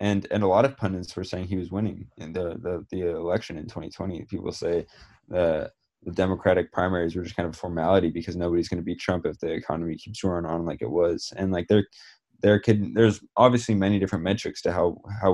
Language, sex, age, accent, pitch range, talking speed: English, male, 20-39, American, 85-105 Hz, 220 wpm